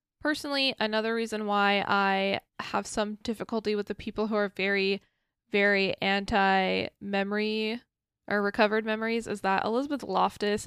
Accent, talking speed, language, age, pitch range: American, 130 wpm, English, 10-29, 195-225 Hz